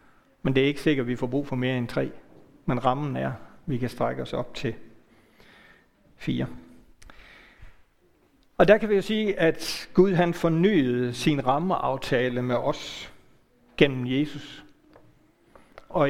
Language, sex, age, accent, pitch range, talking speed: Danish, male, 60-79, native, 125-160 Hz, 155 wpm